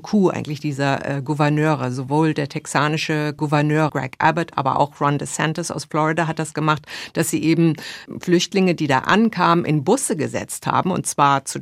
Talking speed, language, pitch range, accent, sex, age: 175 wpm, German, 150-185 Hz, German, female, 50-69